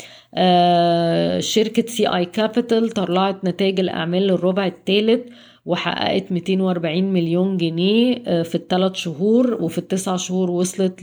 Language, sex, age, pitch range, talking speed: Arabic, female, 20-39, 170-190 Hz, 105 wpm